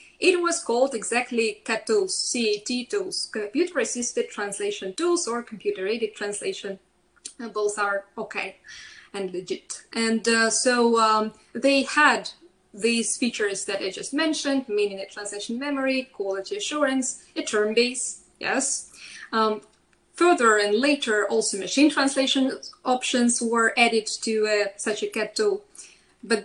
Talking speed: 130 wpm